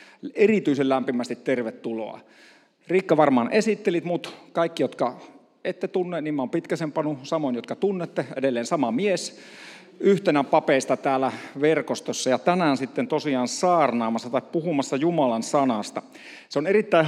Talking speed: 130 wpm